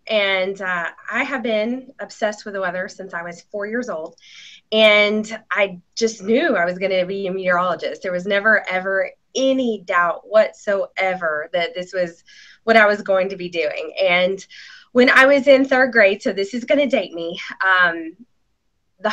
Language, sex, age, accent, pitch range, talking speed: English, female, 20-39, American, 190-250 Hz, 185 wpm